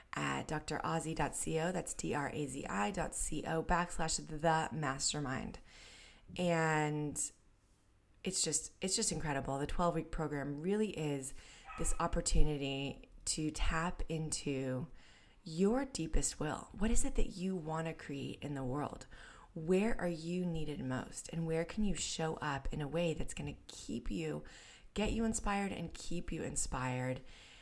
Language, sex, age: English, female, 20-39